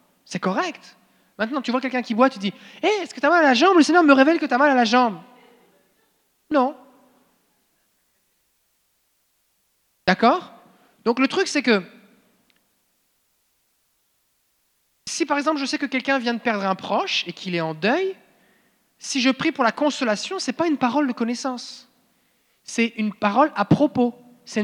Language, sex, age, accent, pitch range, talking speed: French, male, 30-49, French, 200-265 Hz, 185 wpm